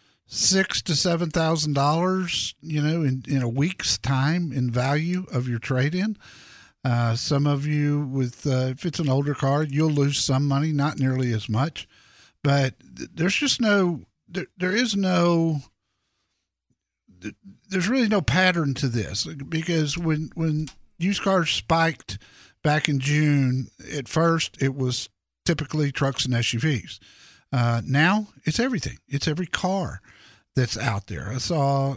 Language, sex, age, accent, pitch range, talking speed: English, male, 50-69, American, 125-170 Hz, 150 wpm